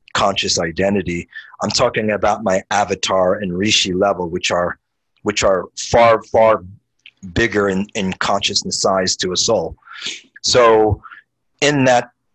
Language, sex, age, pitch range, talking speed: English, male, 40-59, 100-120 Hz, 130 wpm